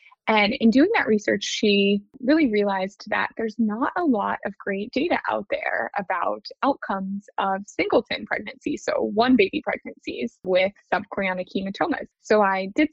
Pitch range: 195-255 Hz